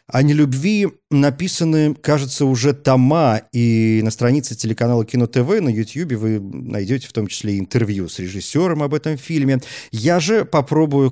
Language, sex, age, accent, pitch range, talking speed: Russian, male, 40-59, native, 120-150 Hz, 145 wpm